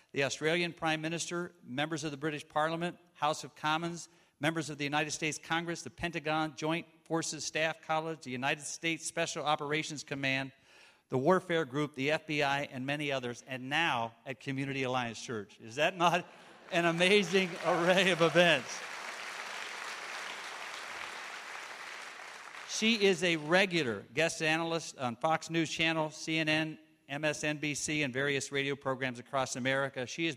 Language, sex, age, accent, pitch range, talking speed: English, male, 50-69, American, 135-165 Hz, 140 wpm